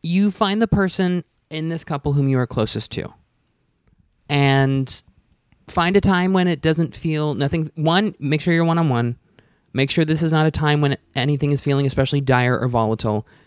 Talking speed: 185 wpm